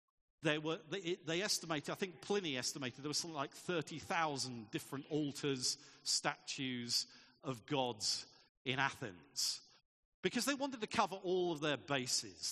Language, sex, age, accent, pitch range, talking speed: English, male, 50-69, British, 135-195 Hz, 145 wpm